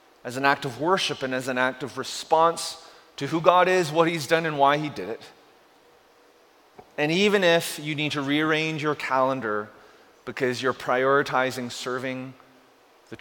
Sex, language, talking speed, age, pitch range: male, English, 170 wpm, 30-49, 130-195 Hz